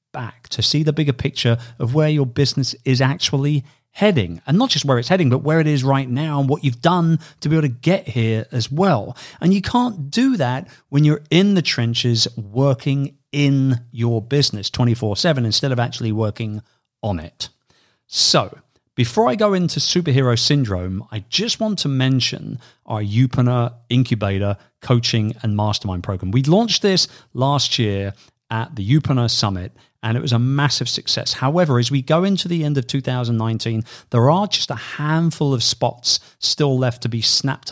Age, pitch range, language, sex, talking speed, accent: 40-59, 120-150 Hz, English, male, 180 wpm, British